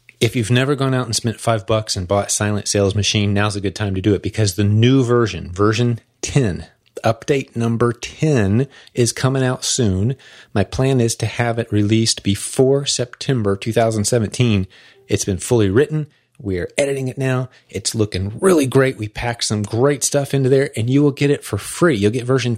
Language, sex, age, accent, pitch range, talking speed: English, male, 30-49, American, 100-130 Hz, 195 wpm